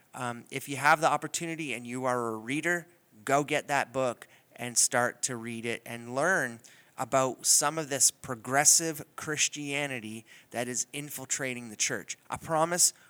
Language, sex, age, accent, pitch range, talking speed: English, male, 30-49, American, 120-145 Hz, 160 wpm